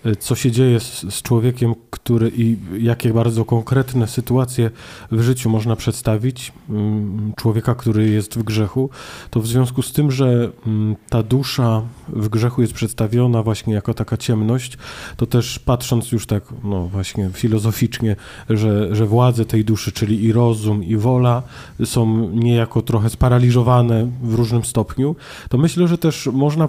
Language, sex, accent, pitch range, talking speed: Polish, male, native, 115-135 Hz, 150 wpm